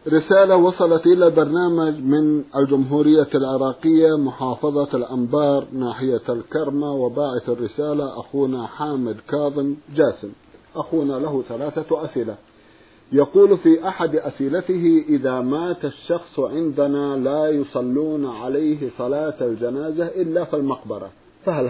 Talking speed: 105 wpm